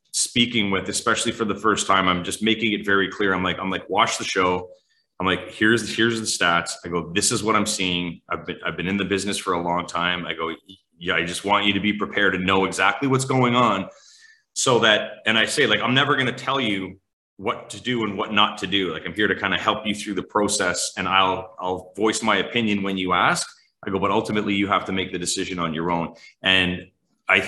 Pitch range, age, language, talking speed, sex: 90-110 Hz, 30-49, English, 250 wpm, male